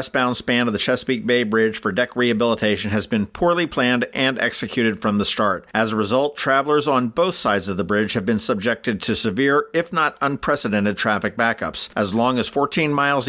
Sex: male